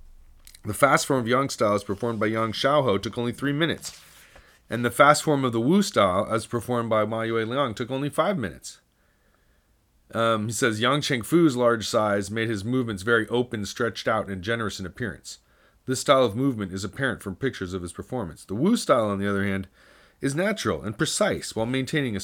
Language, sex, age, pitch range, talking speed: English, male, 40-59, 100-120 Hz, 205 wpm